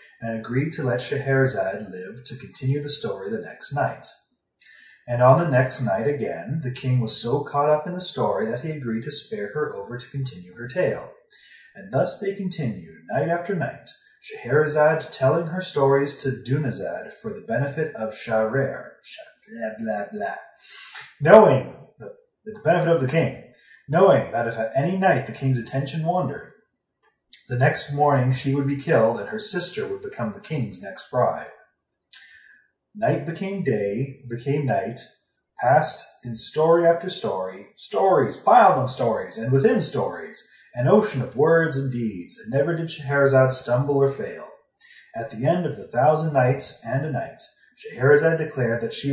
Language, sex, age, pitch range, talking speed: English, male, 30-49, 125-165 Hz, 165 wpm